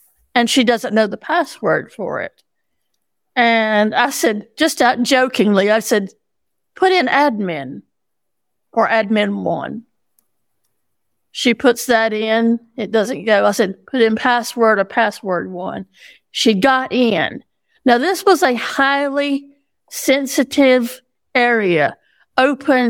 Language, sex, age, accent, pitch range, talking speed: English, female, 50-69, American, 210-255 Hz, 120 wpm